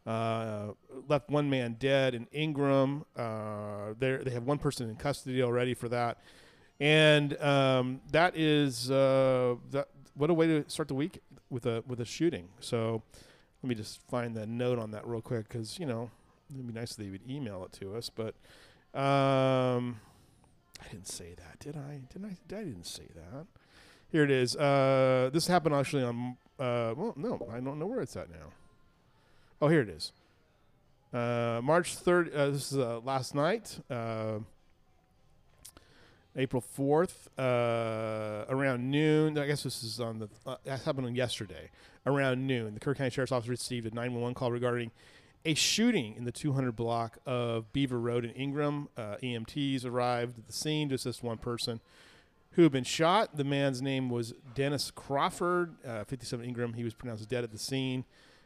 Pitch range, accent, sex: 115-140 Hz, American, male